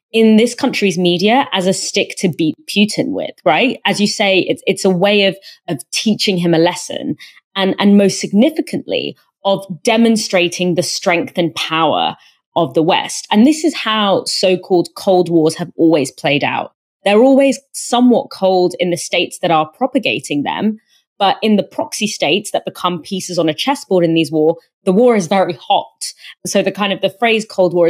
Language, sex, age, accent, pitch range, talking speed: English, female, 20-39, British, 170-225 Hz, 185 wpm